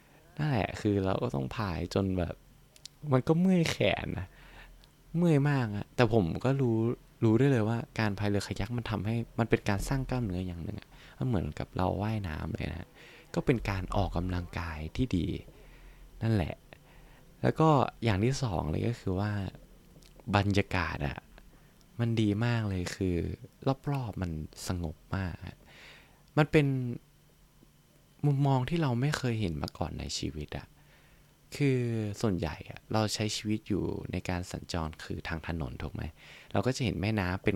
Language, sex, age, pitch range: Thai, male, 20-39, 90-125 Hz